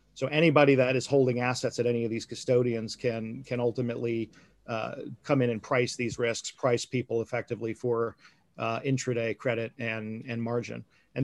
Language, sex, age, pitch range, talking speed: English, male, 40-59, 120-135 Hz, 170 wpm